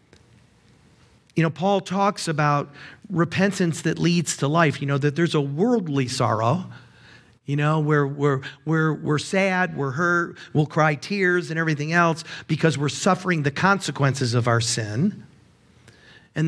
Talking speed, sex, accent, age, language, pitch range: 140 wpm, male, American, 50-69, English, 130-180 Hz